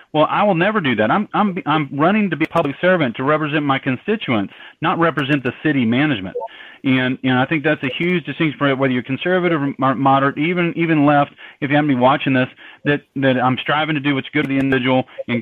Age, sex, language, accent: 40-59, male, English, American